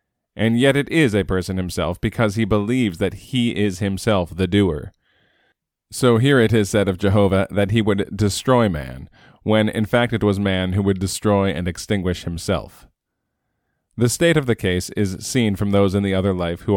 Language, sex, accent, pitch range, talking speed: English, male, American, 95-110 Hz, 195 wpm